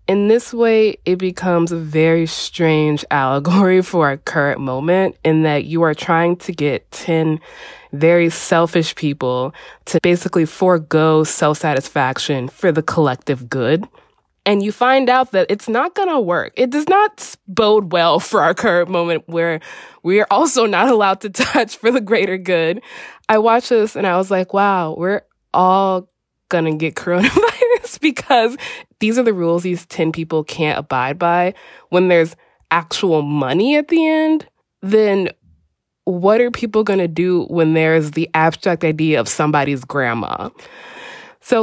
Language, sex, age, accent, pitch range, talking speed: English, female, 20-39, American, 160-215 Hz, 160 wpm